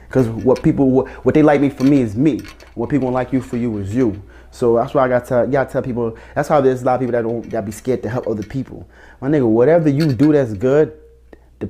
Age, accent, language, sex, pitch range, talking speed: 30-49, American, English, male, 110-130 Hz, 275 wpm